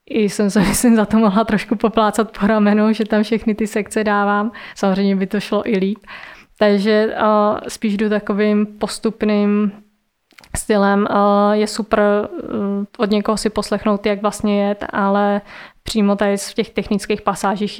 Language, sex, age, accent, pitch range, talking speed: Czech, female, 20-39, native, 200-215 Hz, 160 wpm